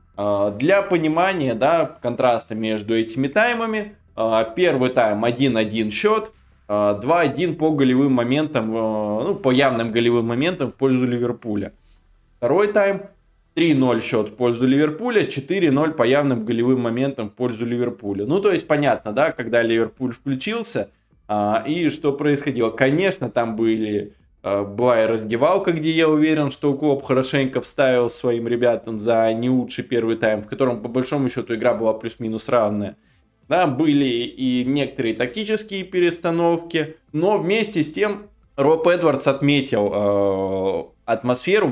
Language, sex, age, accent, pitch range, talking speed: Russian, male, 20-39, native, 110-150 Hz, 130 wpm